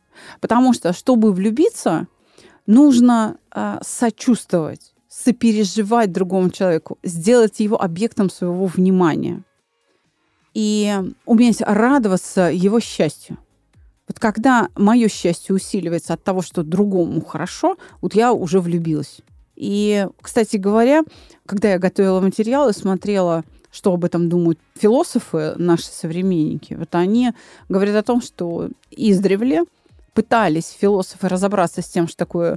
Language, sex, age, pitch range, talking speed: Russian, female, 30-49, 175-220 Hz, 120 wpm